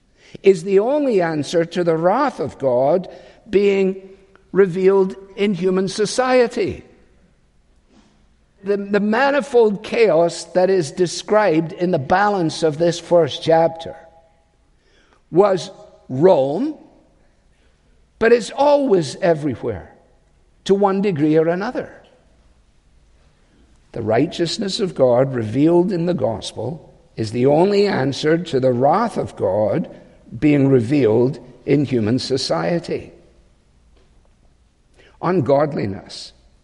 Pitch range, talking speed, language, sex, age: 115-190 Hz, 100 wpm, English, male, 60-79